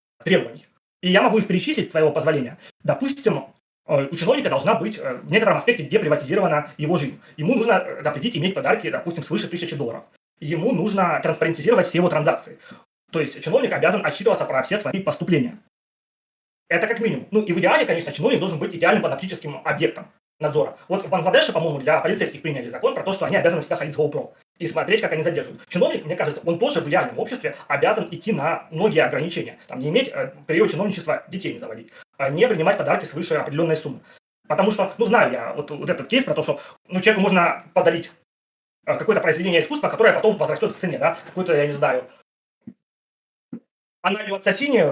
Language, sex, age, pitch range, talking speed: Russian, male, 20-39, 160-215 Hz, 185 wpm